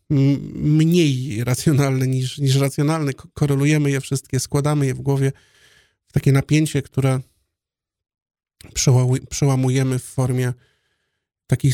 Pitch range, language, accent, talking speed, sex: 120-140 Hz, Polish, native, 100 wpm, male